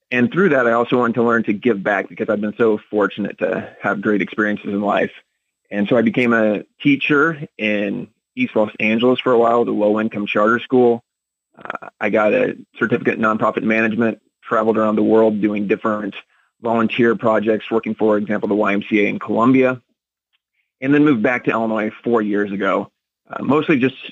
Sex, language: male, English